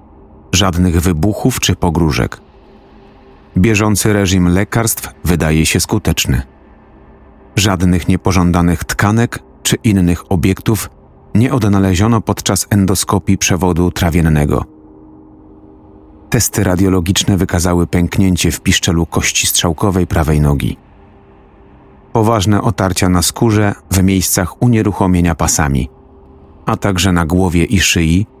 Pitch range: 80-100 Hz